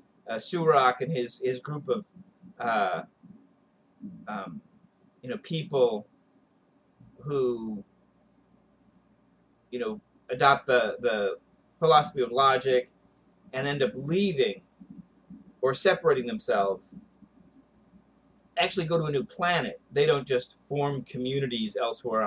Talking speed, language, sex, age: 110 wpm, English, male, 30-49